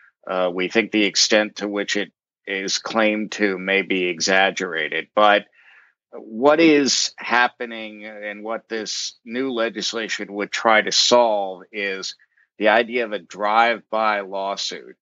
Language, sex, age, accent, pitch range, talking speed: English, male, 50-69, American, 100-115 Hz, 135 wpm